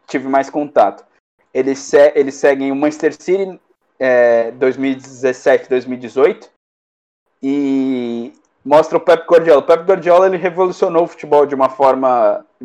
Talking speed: 140 wpm